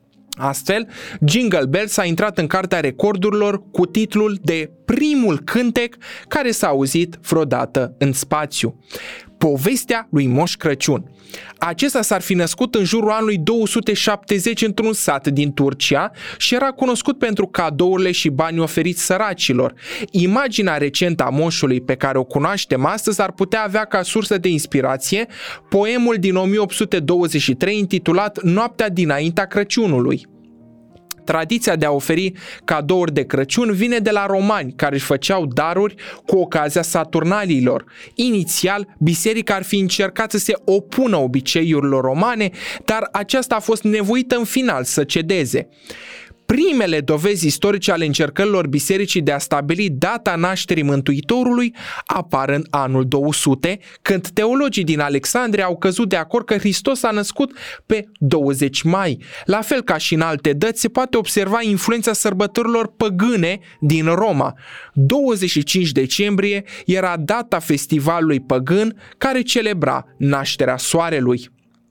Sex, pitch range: male, 150-215 Hz